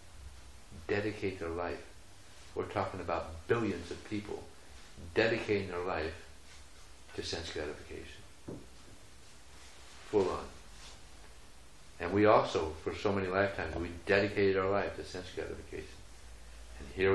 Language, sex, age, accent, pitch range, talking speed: English, male, 60-79, American, 70-95 Hz, 115 wpm